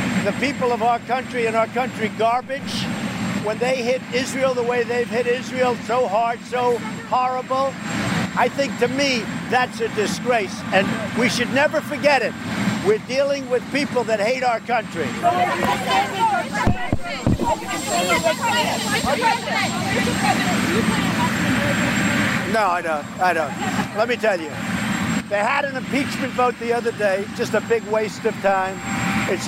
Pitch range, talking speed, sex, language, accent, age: 215-255 Hz, 135 wpm, male, English, American, 60-79